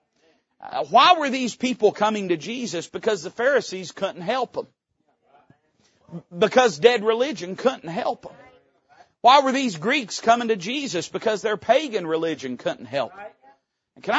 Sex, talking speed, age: male, 150 wpm, 40-59